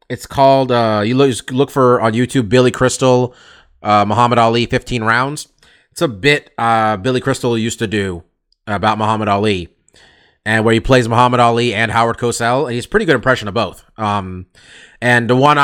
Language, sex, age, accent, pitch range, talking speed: English, male, 30-49, American, 110-135 Hz, 190 wpm